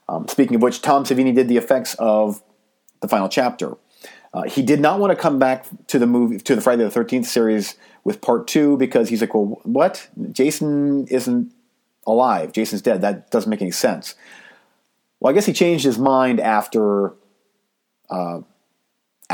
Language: English